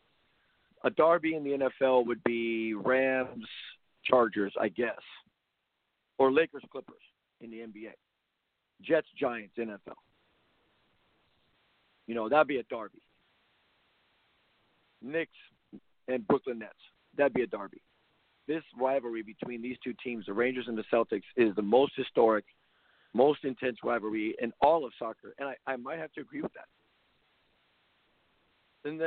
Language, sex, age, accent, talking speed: English, male, 50-69, American, 140 wpm